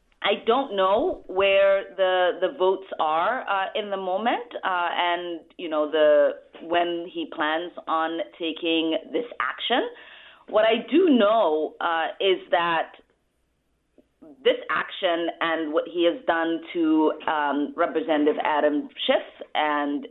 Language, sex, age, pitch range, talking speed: English, female, 30-49, 160-220 Hz, 130 wpm